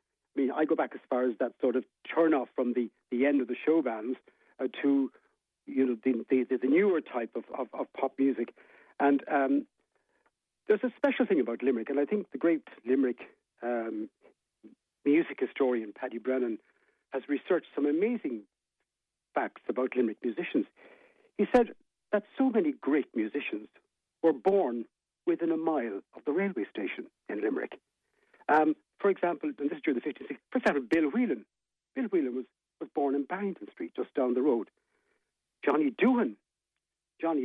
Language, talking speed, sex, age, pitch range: English, 175 wpm, male, 60-79, 130-215 Hz